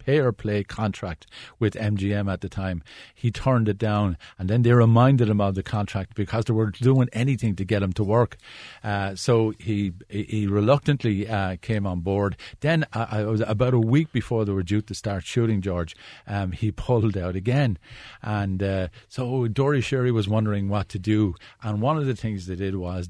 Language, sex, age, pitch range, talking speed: English, male, 50-69, 100-115 Hz, 195 wpm